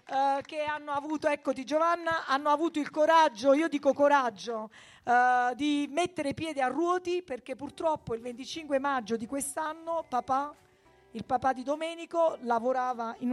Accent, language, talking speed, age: native, Italian, 150 wpm, 40-59